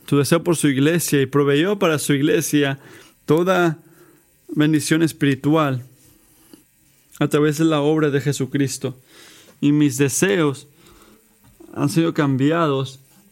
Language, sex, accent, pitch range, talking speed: Spanish, male, Mexican, 135-165 Hz, 115 wpm